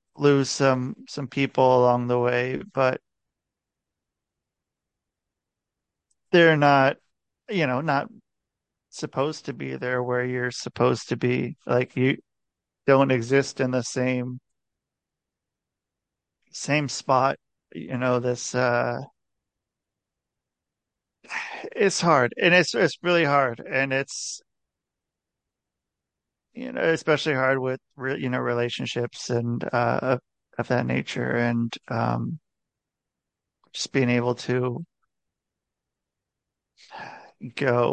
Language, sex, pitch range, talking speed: English, male, 125-150 Hz, 100 wpm